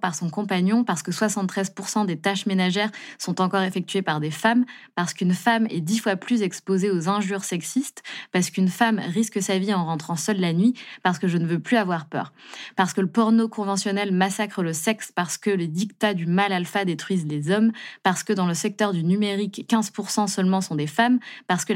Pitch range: 170-215 Hz